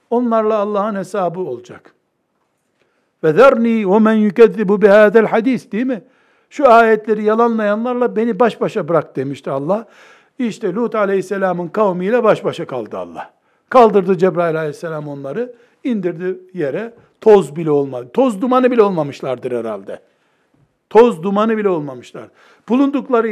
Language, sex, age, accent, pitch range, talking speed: Turkish, male, 60-79, native, 190-250 Hz, 125 wpm